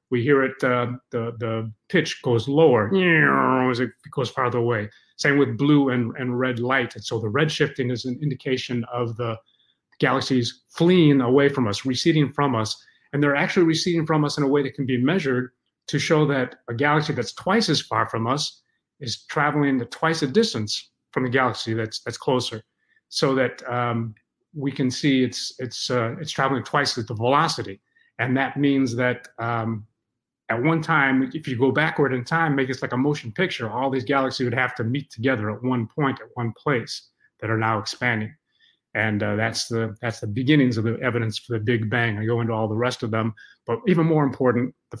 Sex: male